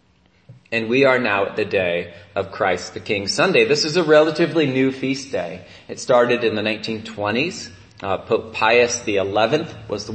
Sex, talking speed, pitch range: male, 175 wpm, 105-130 Hz